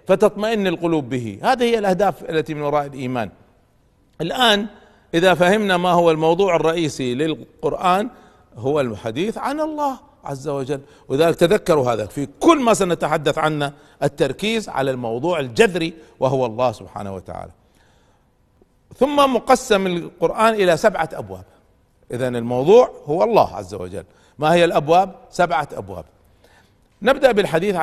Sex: male